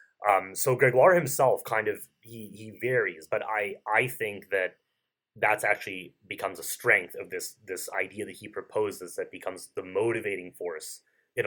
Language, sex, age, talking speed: English, male, 30-49, 165 wpm